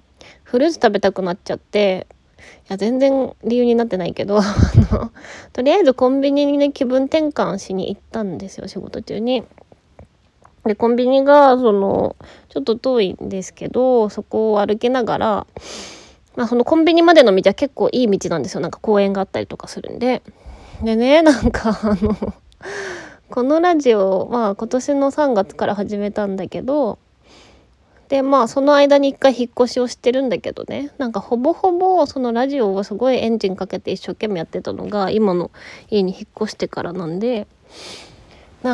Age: 20-39